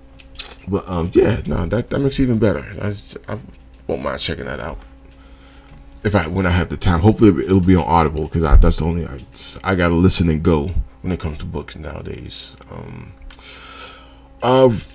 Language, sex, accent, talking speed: English, male, American, 195 wpm